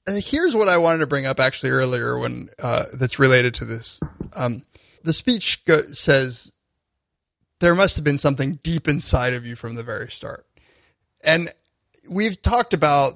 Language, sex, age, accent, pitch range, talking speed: English, male, 30-49, American, 125-170 Hz, 175 wpm